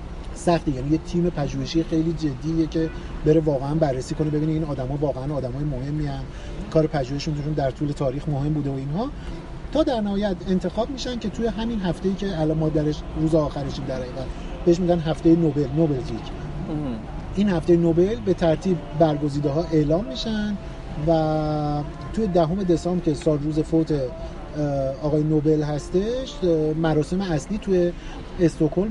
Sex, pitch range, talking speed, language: male, 145-170 Hz, 150 wpm, Persian